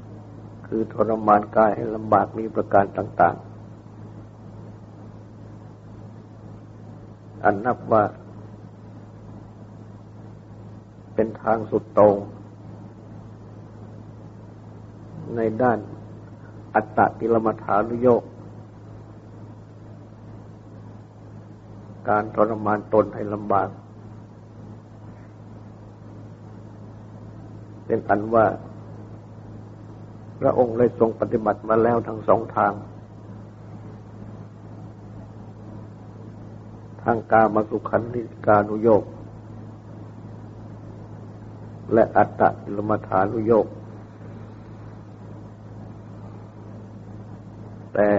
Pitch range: 105-110 Hz